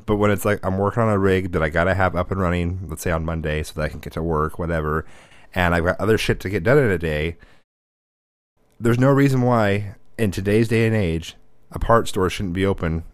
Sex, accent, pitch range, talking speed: male, American, 90-115 Hz, 245 wpm